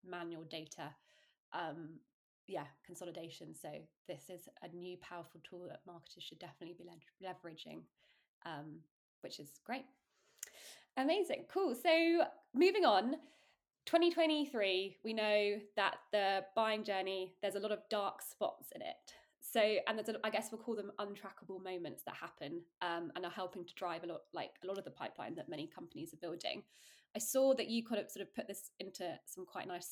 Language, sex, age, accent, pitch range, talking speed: English, female, 20-39, British, 175-215 Hz, 175 wpm